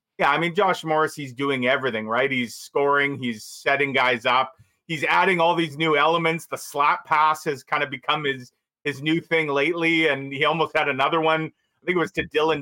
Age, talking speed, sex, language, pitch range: 40-59, 210 wpm, male, English, 130-155 Hz